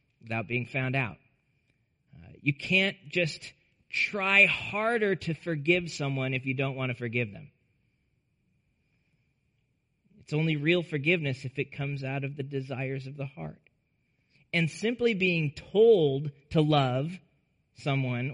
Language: English